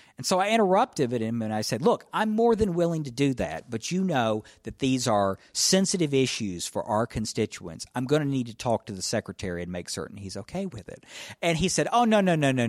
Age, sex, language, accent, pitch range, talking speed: 50-69, male, English, American, 110-175 Hz, 240 wpm